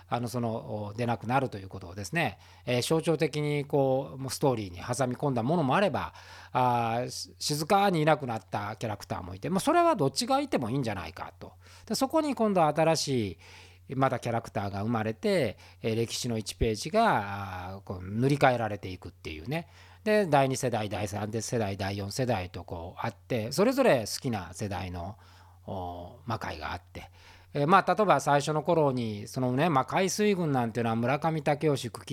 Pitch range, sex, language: 100-160 Hz, male, Japanese